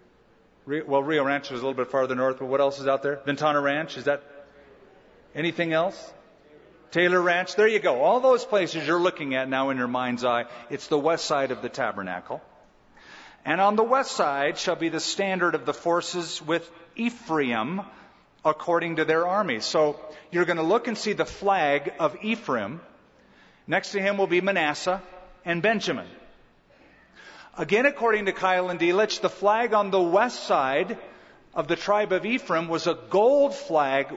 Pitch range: 140-185 Hz